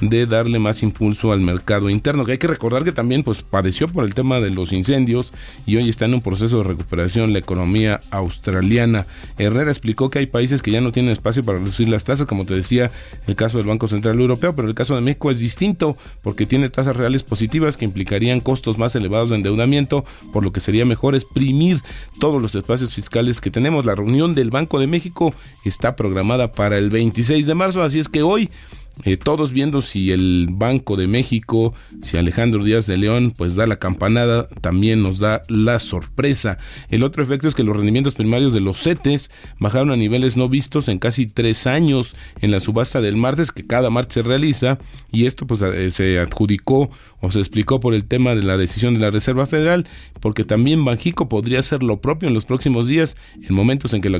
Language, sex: Spanish, male